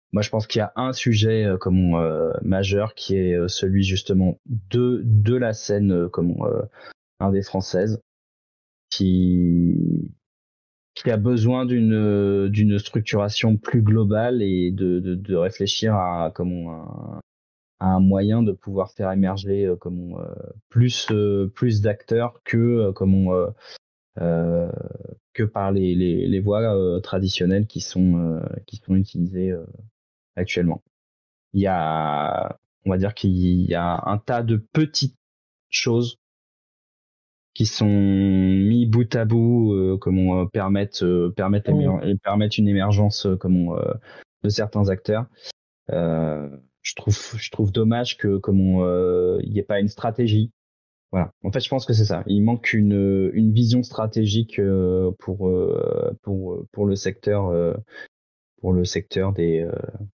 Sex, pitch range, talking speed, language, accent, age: male, 90-110 Hz, 155 wpm, French, French, 20-39